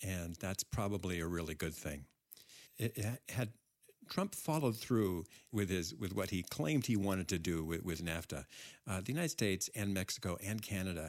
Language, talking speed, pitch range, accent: English, 185 wpm, 90-125 Hz, American